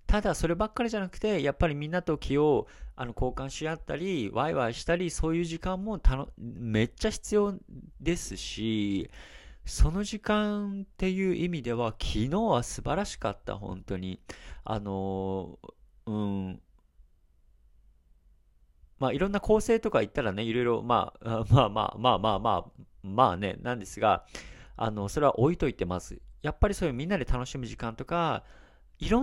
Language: Japanese